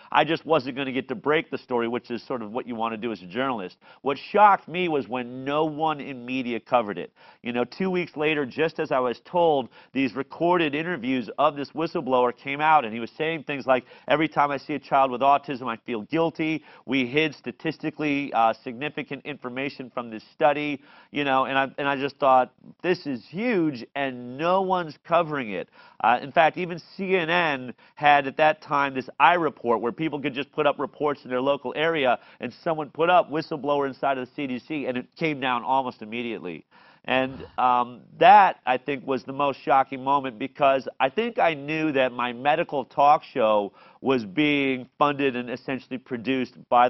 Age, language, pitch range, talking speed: 40-59, English, 125-155 Hz, 200 wpm